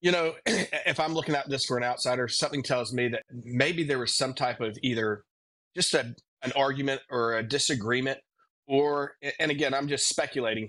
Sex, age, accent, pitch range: male, 30-49, American, 115-135 Hz